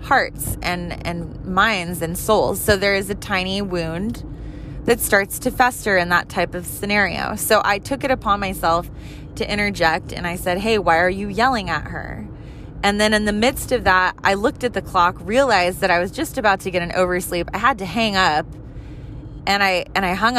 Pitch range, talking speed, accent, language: 175-210 Hz, 210 wpm, American, English